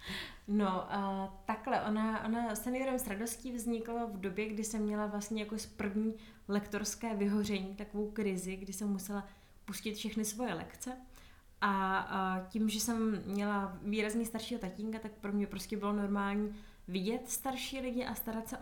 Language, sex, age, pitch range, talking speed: Czech, female, 20-39, 200-230 Hz, 150 wpm